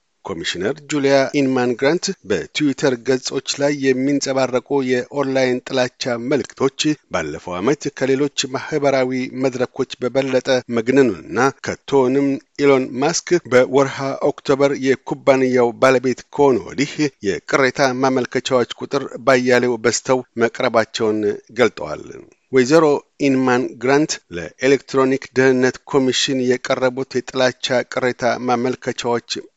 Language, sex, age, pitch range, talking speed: Amharic, male, 50-69, 125-140 Hz, 85 wpm